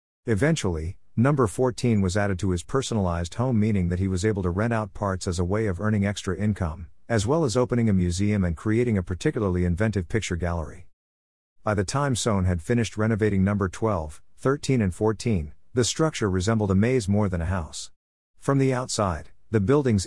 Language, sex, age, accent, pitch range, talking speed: English, male, 50-69, American, 90-115 Hz, 190 wpm